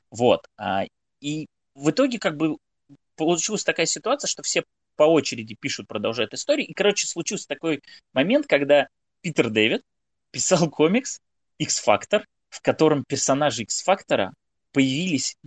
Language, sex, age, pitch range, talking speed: Russian, male, 20-39, 125-165 Hz, 130 wpm